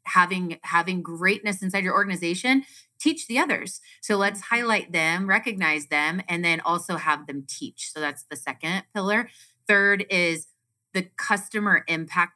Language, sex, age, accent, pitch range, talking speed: English, female, 30-49, American, 160-200 Hz, 150 wpm